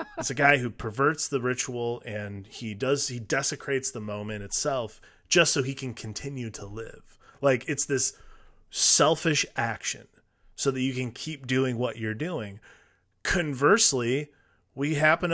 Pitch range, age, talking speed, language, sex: 105-135 Hz, 20-39, 155 wpm, English, male